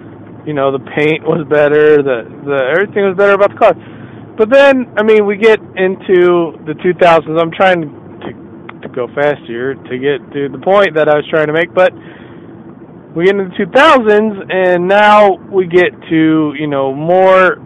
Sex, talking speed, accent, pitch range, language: male, 185 wpm, American, 145-185 Hz, English